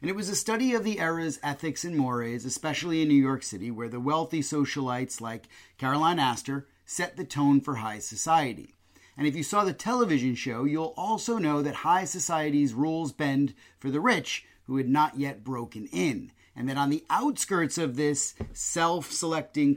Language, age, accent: English, 30-49, American